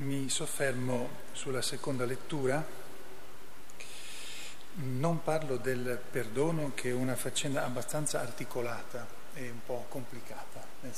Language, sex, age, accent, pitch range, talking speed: Italian, male, 40-59, native, 125-135 Hz, 110 wpm